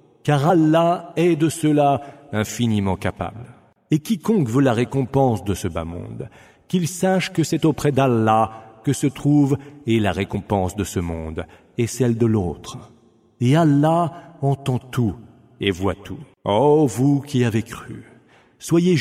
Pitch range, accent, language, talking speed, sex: 100-155 Hz, French, English, 150 wpm, male